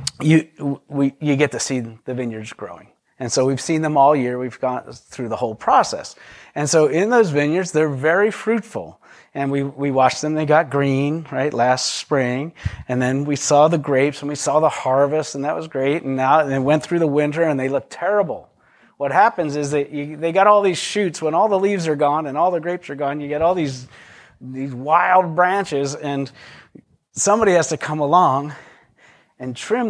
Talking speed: 205 wpm